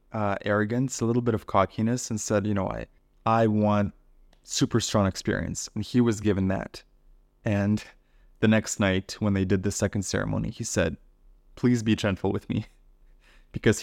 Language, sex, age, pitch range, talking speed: English, male, 20-39, 95-115 Hz, 175 wpm